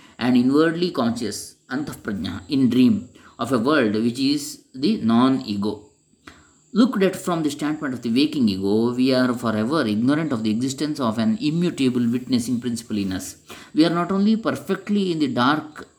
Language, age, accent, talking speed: English, 20-39, Indian, 165 wpm